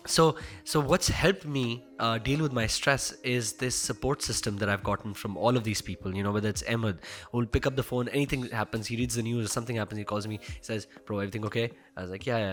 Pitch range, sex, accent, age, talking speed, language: 105-125 Hz, male, Indian, 20-39, 260 wpm, English